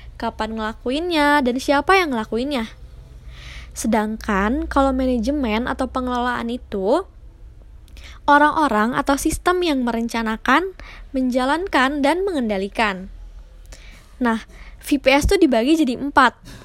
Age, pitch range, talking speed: 20-39, 220-295 Hz, 95 wpm